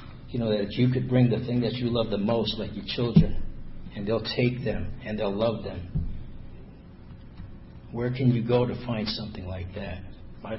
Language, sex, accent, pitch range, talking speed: English, male, American, 105-125 Hz, 195 wpm